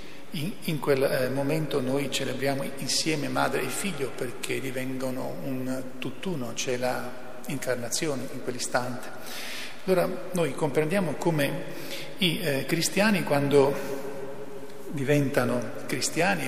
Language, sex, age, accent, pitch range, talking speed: Italian, male, 40-59, native, 130-155 Hz, 110 wpm